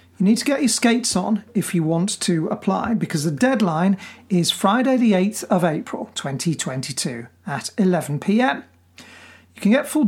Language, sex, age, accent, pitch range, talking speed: English, male, 40-59, British, 175-225 Hz, 175 wpm